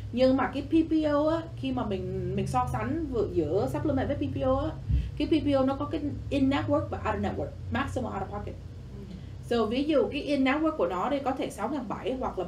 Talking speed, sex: 215 wpm, female